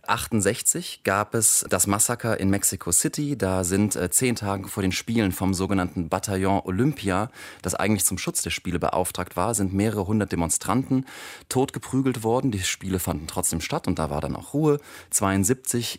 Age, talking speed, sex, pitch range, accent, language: 30-49, 175 wpm, male, 90-110 Hz, German, German